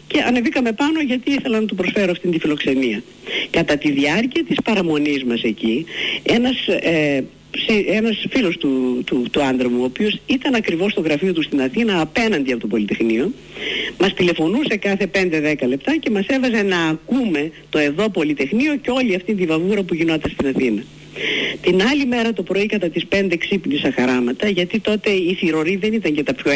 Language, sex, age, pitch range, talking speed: Greek, female, 50-69, 145-235 Hz, 185 wpm